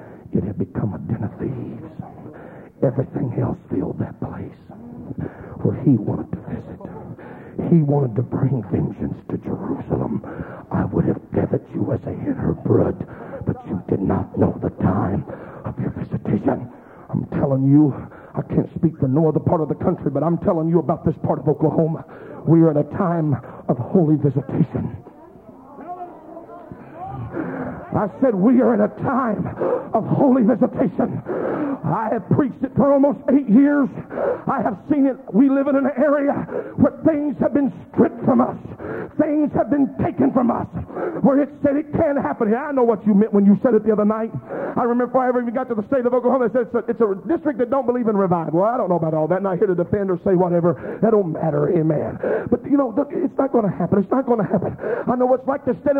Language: English